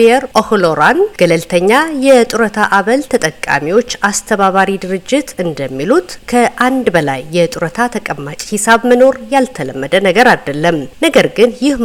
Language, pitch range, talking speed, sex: Amharic, 160-235 Hz, 100 wpm, female